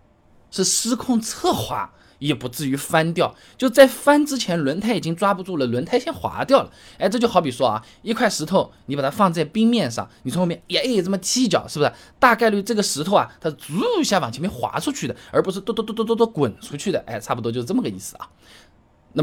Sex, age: male, 20-39